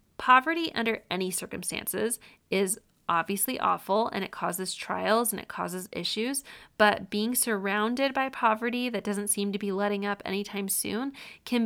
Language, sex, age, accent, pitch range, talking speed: English, female, 20-39, American, 200-225 Hz, 155 wpm